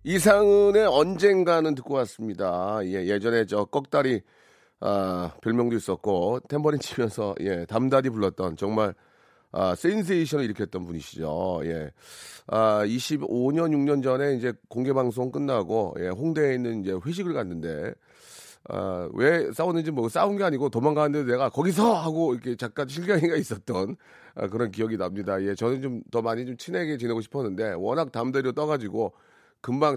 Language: Korean